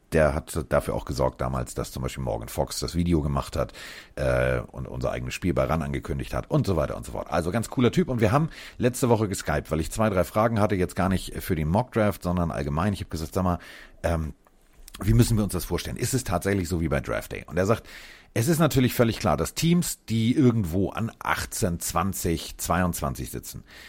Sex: male